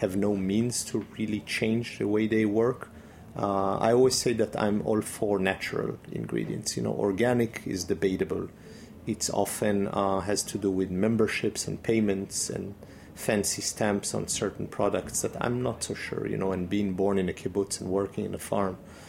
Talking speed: 185 wpm